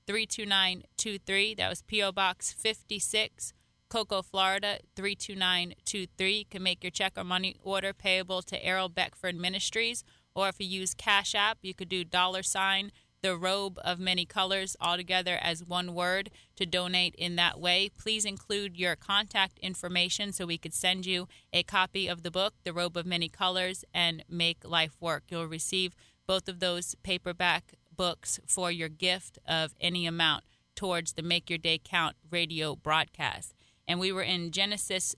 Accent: American